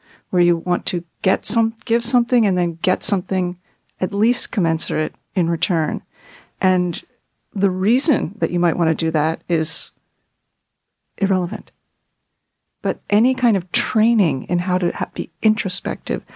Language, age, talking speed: English, 40-59, 145 wpm